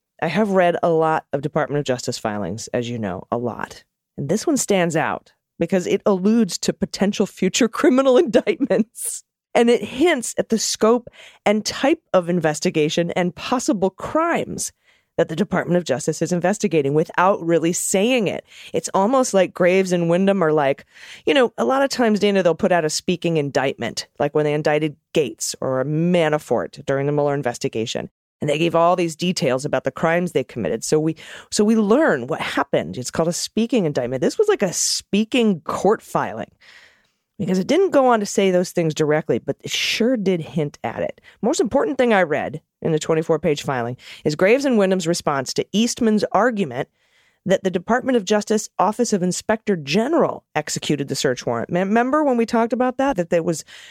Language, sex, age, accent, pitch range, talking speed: English, female, 30-49, American, 155-220 Hz, 190 wpm